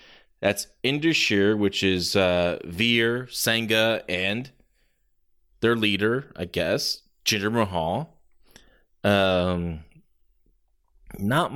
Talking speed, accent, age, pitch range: 85 wpm, American, 20-39, 100-130 Hz